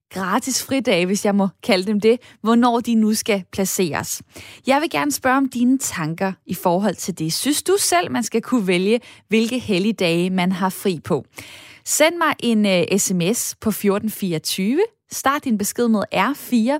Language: Danish